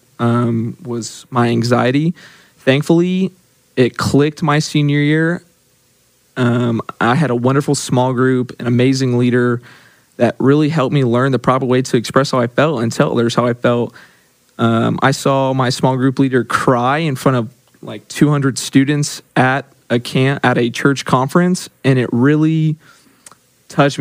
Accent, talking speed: American, 160 wpm